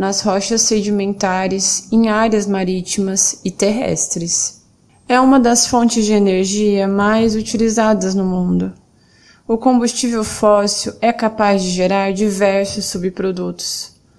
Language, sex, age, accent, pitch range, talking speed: Portuguese, female, 20-39, Brazilian, 190-225 Hz, 115 wpm